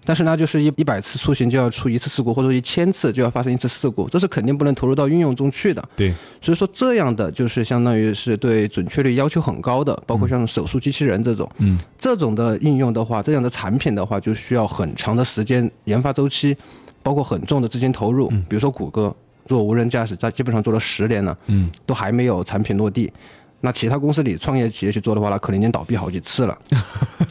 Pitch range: 105-135 Hz